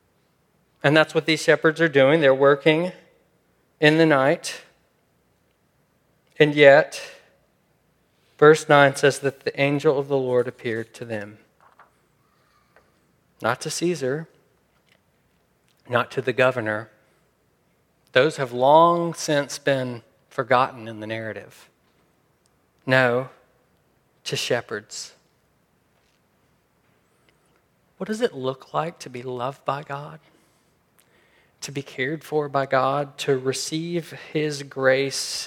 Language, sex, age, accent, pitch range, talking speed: English, male, 40-59, American, 120-145 Hz, 110 wpm